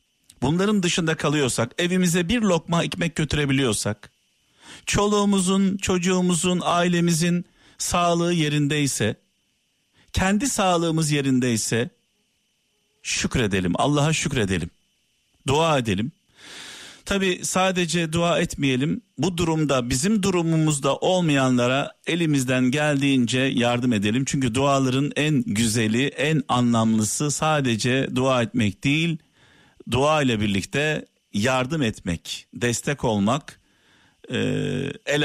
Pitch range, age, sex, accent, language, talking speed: 115-165 Hz, 50-69, male, native, Turkish, 90 wpm